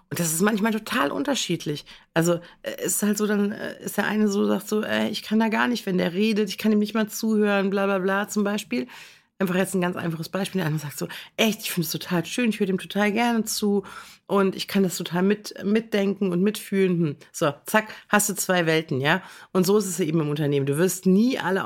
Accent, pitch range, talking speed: German, 170-210 Hz, 240 wpm